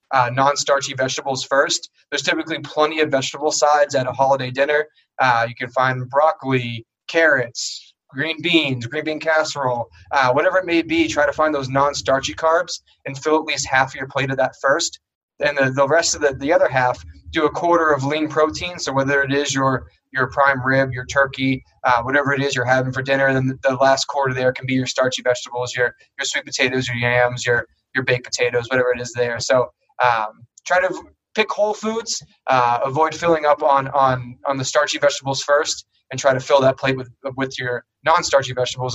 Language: English